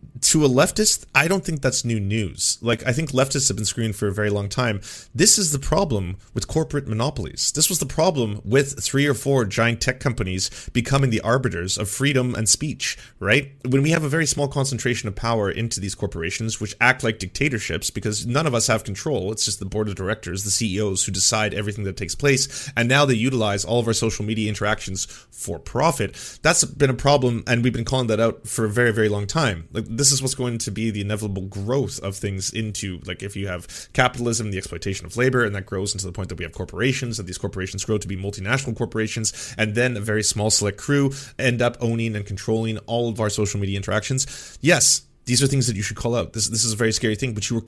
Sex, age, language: male, 30-49, English